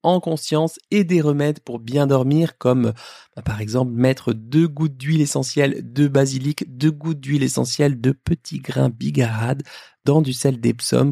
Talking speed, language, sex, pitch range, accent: 165 wpm, French, male, 120-160 Hz, French